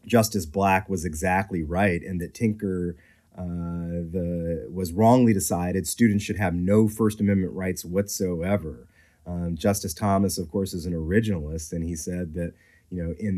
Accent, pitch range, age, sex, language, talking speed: American, 85-105 Hz, 30-49, male, English, 160 wpm